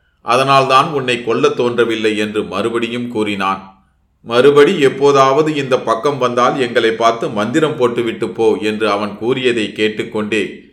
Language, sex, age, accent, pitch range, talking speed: Tamil, male, 30-49, native, 105-135 Hz, 115 wpm